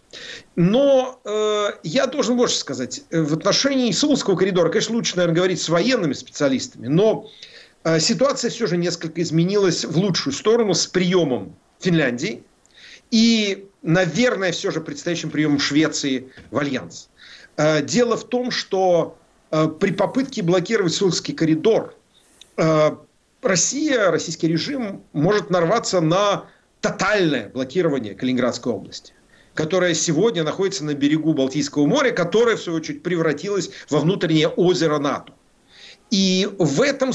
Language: Russian